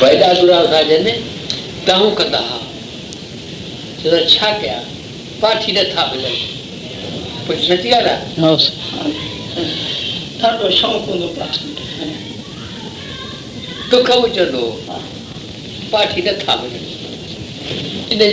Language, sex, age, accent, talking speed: Hindi, female, 60-79, native, 110 wpm